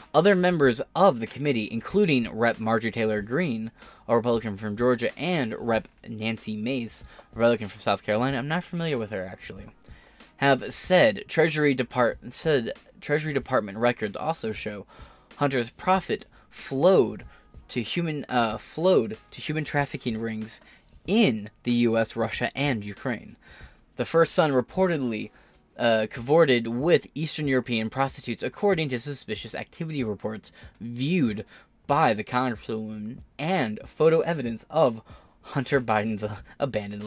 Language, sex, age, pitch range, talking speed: English, male, 20-39, 110-140 Hz, 135 wpm